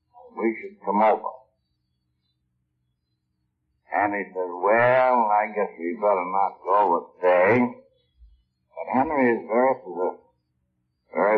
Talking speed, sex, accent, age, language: 110 wpm, male, American, 60-79, English